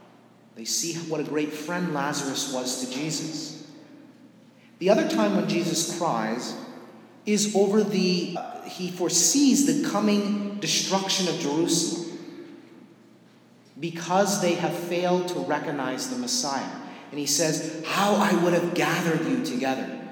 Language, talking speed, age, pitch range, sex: English, 135 wpm, 30-49, 135-190 Hz, male